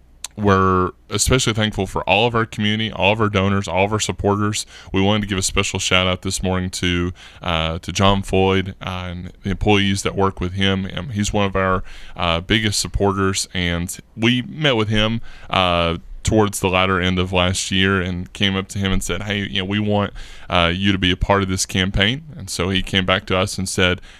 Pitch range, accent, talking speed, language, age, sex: 90-100 Hz, American, 220 wpm, English, 20-39, male